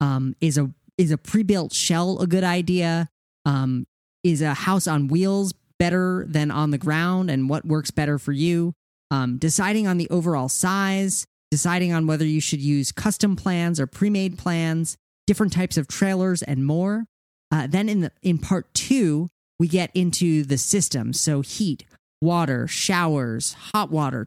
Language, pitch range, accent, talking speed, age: English, 150-185 Hz, American, 170 wpm, 30-49